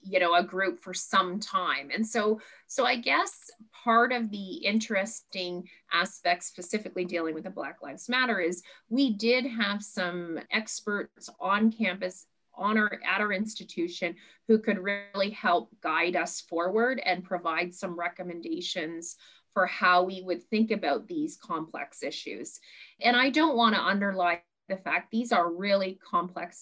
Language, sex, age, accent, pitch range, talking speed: English, female, 30-49, American, 175-220 Hz, 155 wpm